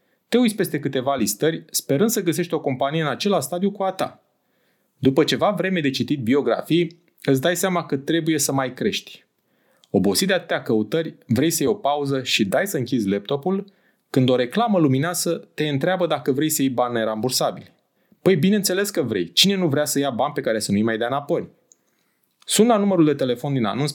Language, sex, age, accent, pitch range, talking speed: Romanian, male, 30-49, native, 125-170 Hz, 200 wpm